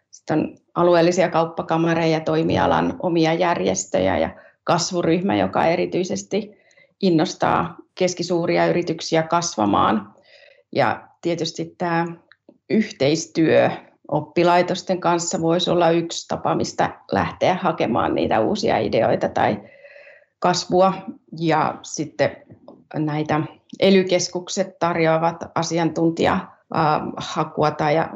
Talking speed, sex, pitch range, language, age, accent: 85 wpm, female, 160-180 Hz, Finnish, 30-49, native